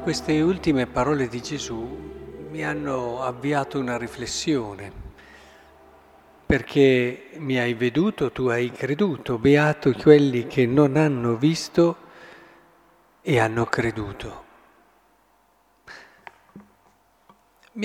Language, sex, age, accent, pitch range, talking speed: Italian, male, 50-69, native, 120-160 Hz, 90 wpm